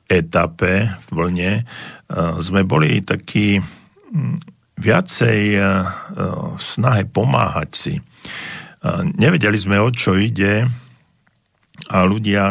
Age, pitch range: 50-69, 90-105 Hz